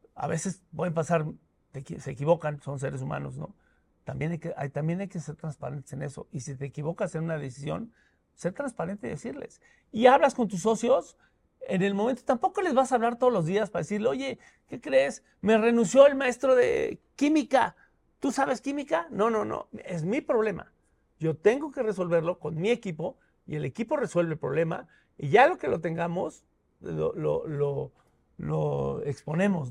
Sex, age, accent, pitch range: male, 50-69, Mexican, 160-245 Hz